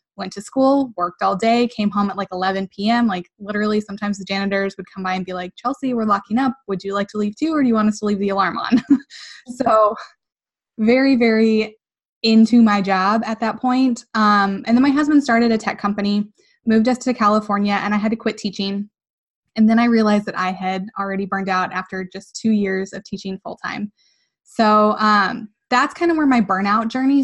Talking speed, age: 215 wpm, 10-29